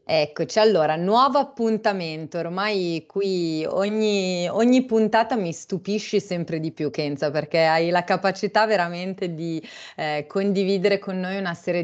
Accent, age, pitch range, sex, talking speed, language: native, 30-49, 150-185 Hz, female, 135 wpm, Italian